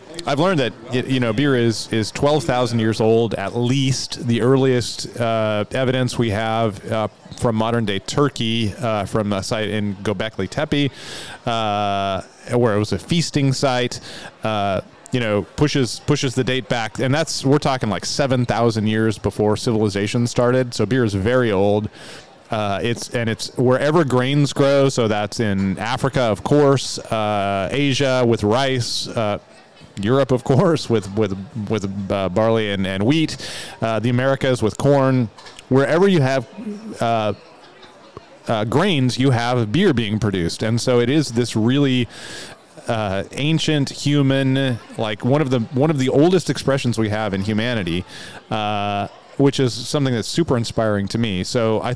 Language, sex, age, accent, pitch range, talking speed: English, male, 30-49, American, 105-135 Hz, 160 wpm